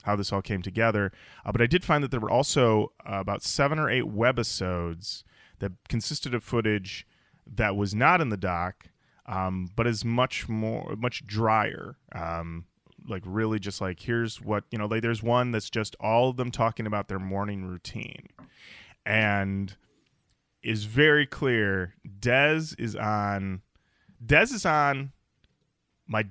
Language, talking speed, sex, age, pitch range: English, 155 wpm, male, 20-39, 95-120 Hz